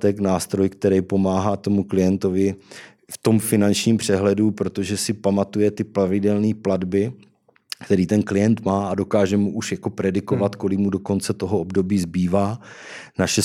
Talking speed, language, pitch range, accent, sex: 145 wpm, Czech, 95-105 Hz, native, male